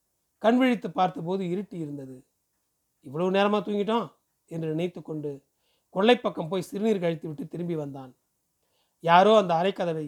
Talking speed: 125 wpm